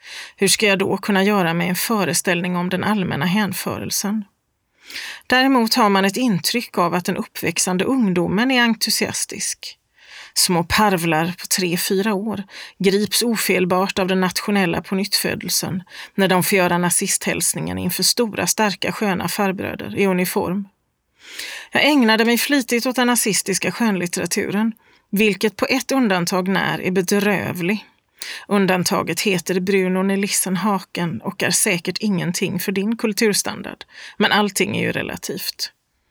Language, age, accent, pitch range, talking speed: Swedish, 30-49, native, 185-215 Hz, 130 wpm